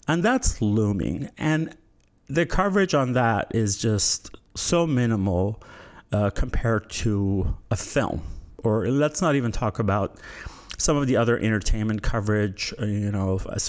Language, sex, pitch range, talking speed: English, male, 100-125 Hz, 140 wpm